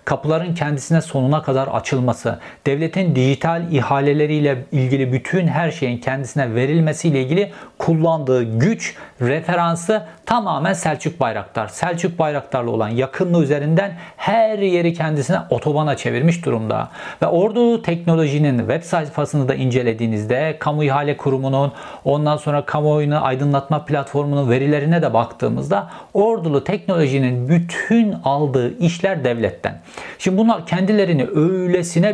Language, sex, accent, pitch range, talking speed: Turkish, male, native, 135-170 Hz, 110 wpm